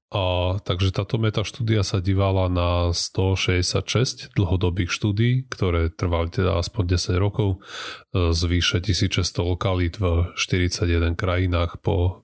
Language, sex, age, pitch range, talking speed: Slovak, male, 30-49, 90-105 Hz, 115 wpm